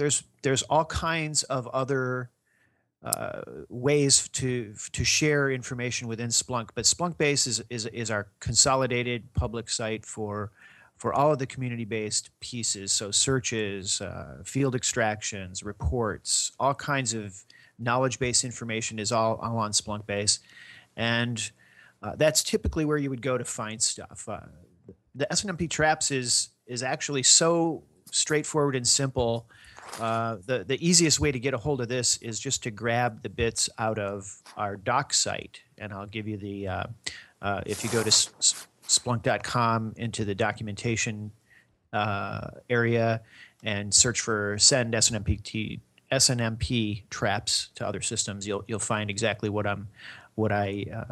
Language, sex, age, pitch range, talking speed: English, male, 40-59, 105-130 Hz, 150 wpm